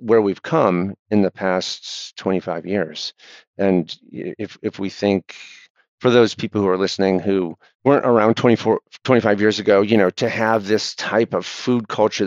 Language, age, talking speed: English, 50-69, 170 wpm